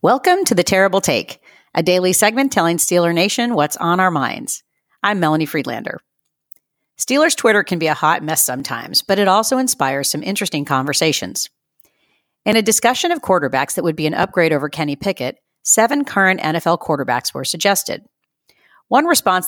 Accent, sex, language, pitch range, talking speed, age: American, female, English, 150-200 Hz, 165 wpm, 40-59